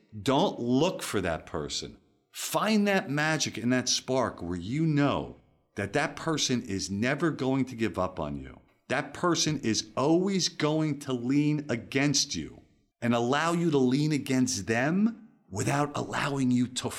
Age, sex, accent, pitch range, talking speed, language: 50-69, male, American, 120-165 Hz, 160 wpm, English